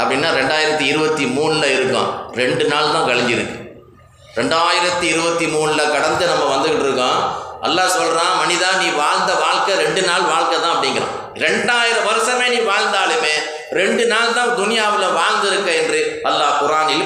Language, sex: Tamil, male